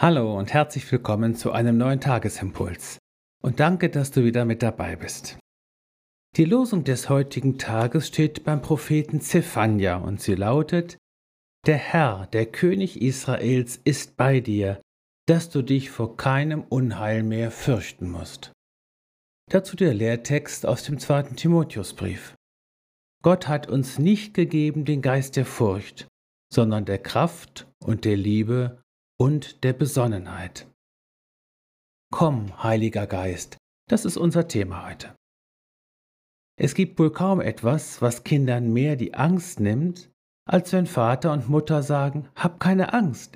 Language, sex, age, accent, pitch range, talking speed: German, male, 50-69, German, 110-160 Hz, 135 wpm